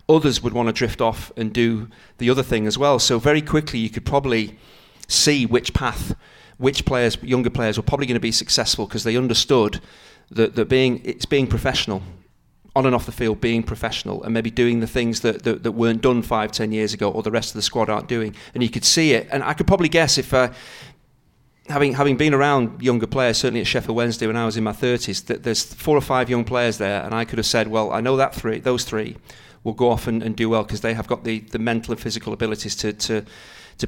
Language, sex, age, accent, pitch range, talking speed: English, male, 40-59, British, 110-125 Hz, 245 wpm